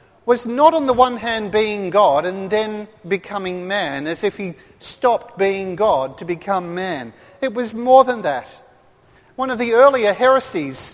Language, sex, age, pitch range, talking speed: English, male, 40-59, 195-255 Hz, 170 wpm